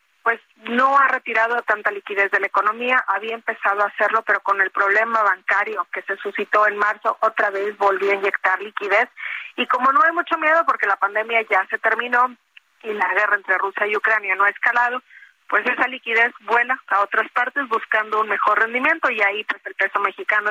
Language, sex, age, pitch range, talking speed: Spanish, female, 30-49, 200-235 Hz, 200 wpm